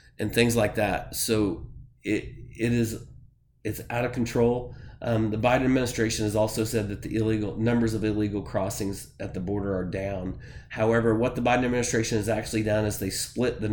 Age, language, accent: 30-49, English, American